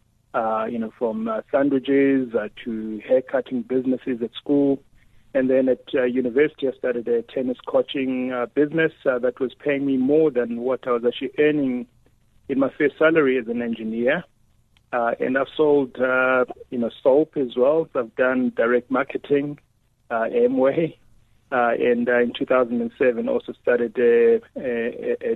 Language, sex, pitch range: English, male, 115-140 Hz